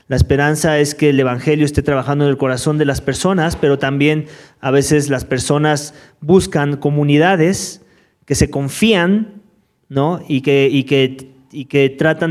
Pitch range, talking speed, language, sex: 130-155 Hz, 160 wpm, English, male